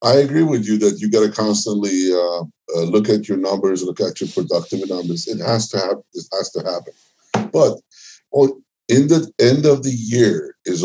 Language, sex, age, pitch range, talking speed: English, male, 60-79, 95-125 Hz, 200 wpm